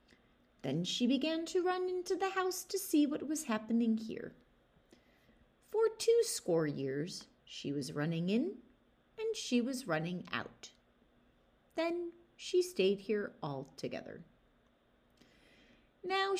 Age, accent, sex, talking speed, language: 30-49, American, female, 120 wpm, English